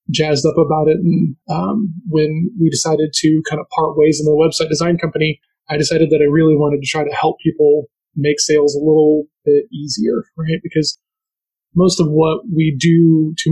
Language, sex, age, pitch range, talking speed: English, male, 20-39, 150-165 Hz, 195 wpm